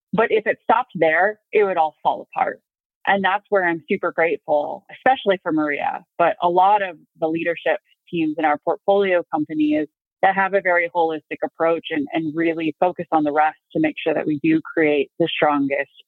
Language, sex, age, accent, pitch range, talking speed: English, female, 30-49, American, 155-215 Hz, 195 wpm